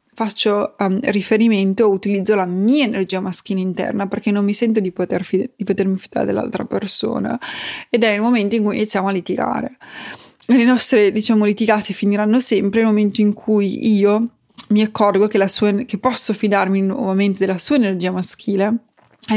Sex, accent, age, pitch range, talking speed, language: female, native, 20-39, 195-225 Hz, 175 wpm, Italian